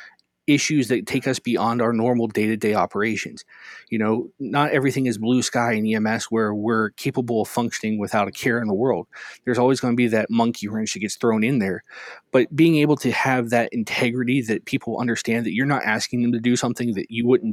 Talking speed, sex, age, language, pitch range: 215 wpm, male, 20-39, English, 115-130 Hz